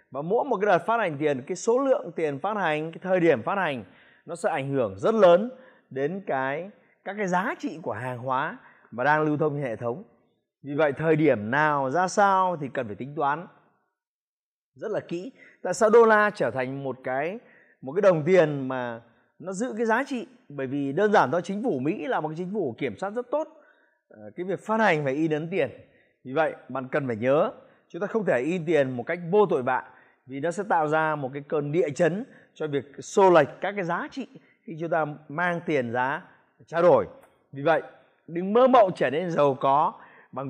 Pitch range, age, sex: 140-205 Hz, 20-39, male